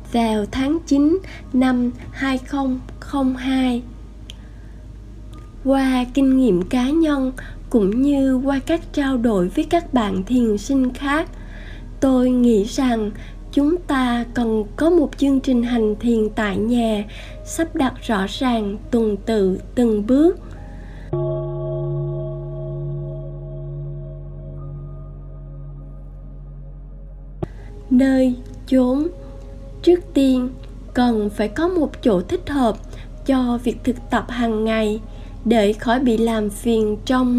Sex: female